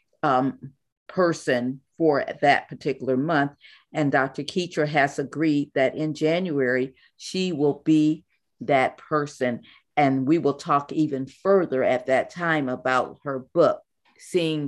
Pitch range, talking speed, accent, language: 150-200 Hz, 130 wpm, American, English